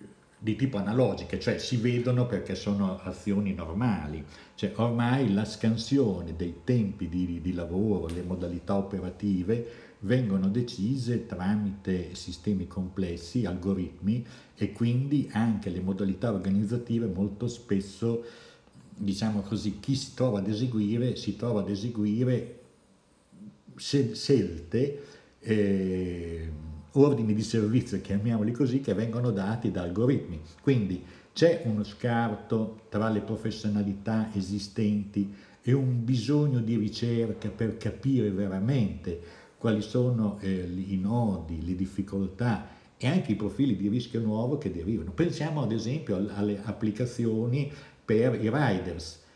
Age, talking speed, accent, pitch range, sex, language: 60-79, 120 wpm, native, 95-120 Hz, male, Italian